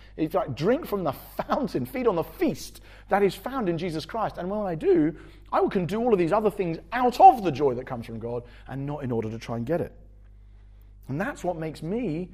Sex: male